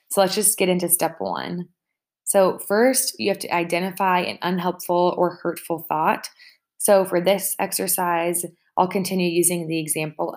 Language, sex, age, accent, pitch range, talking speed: English, female, 20-39, American, 160-185 Hz, 155 wpm